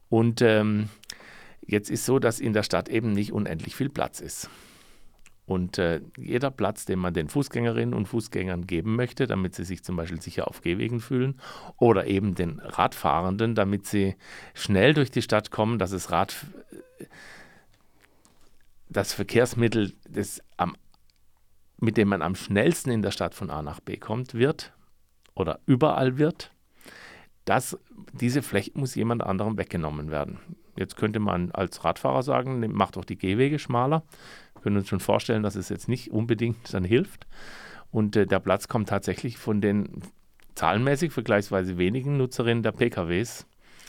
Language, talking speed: German, 160 wpm